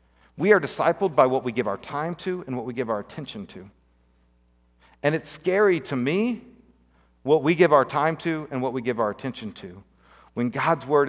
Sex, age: male, 50-69